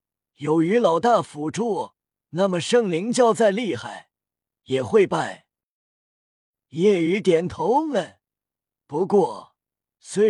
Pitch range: 160-220 Hz